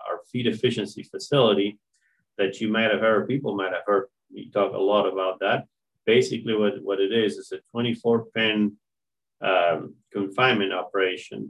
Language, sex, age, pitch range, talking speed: English, male, 30-49, 95-120 Hz, 150 wpm